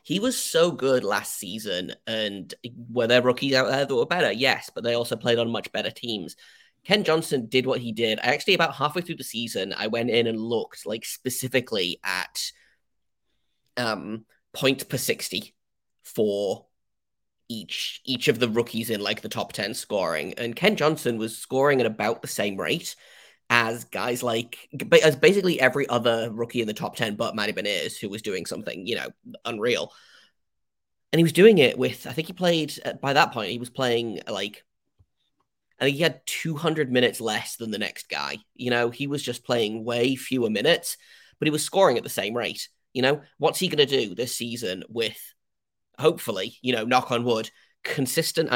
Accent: British